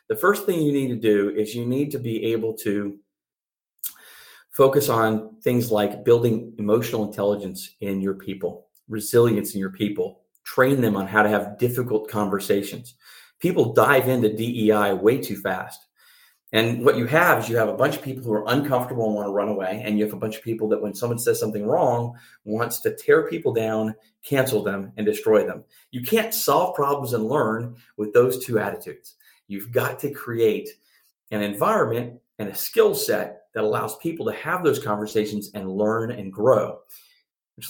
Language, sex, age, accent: English, male, 40-59, American